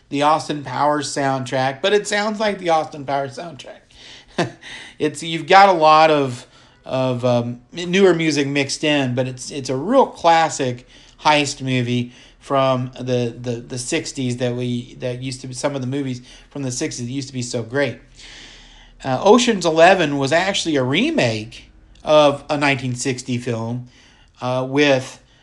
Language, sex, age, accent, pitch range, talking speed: English, male, 40-59, American, 125-150 Hz, 165 wpm